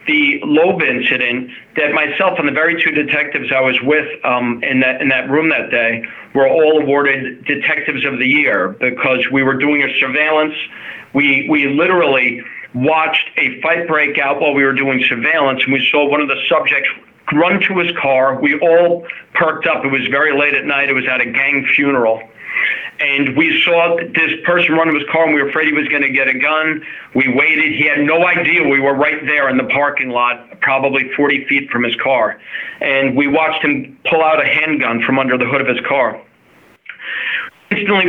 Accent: American